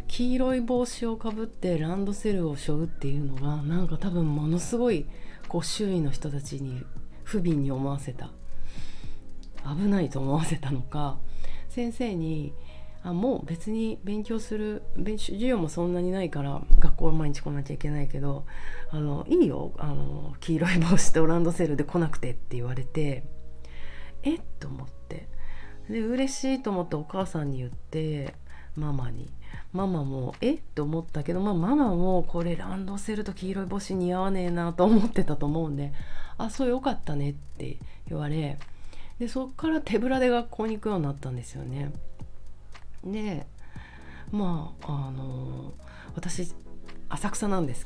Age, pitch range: 40-59, 135-195 Hz